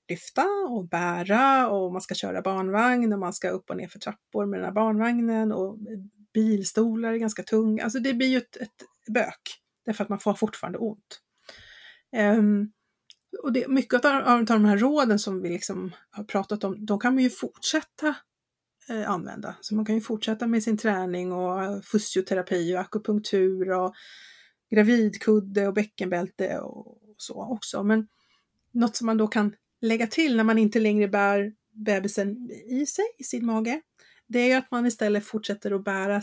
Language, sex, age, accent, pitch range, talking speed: English, female, 30-49, Swedish, 200-235 Hz, 175 wpm